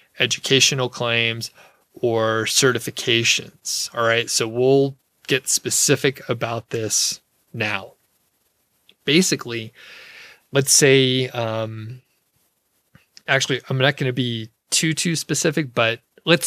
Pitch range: 115-135 Hz